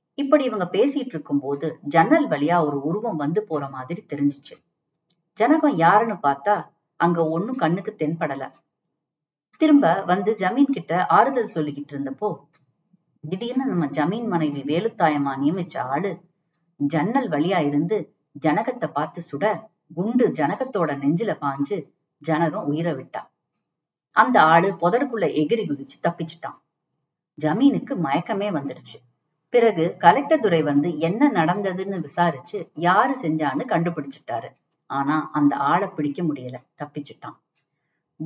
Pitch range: 150-205 Hz